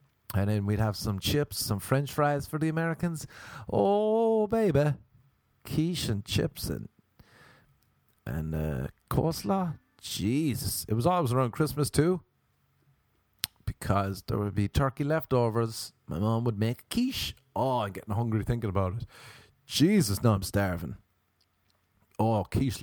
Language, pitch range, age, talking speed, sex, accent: English, 100-125 Hz, 30-49, 140 wpm, male, Swedish